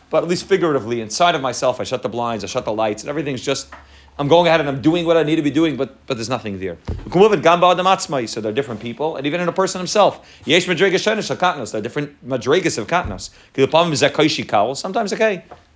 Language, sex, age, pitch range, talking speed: English, male, 30-49, 115-160 Hz, 195 wpm